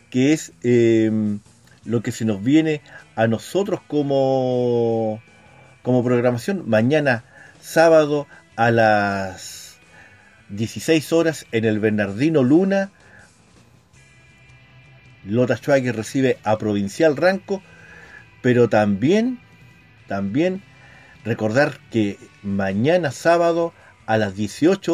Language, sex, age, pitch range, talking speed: Spanish, male, 50-69, 110-150 Hz, 95 wpm